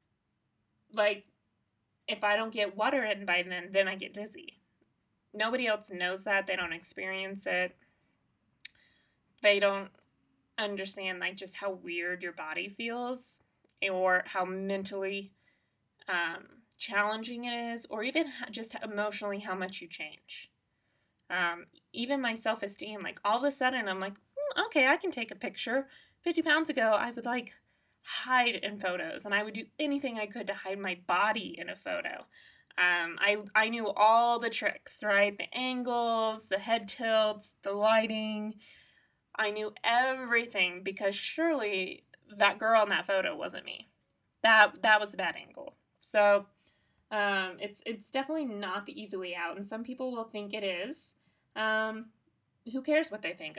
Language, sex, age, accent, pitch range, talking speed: English, female, 20-39, American, 195-235 Hz, 160 wpm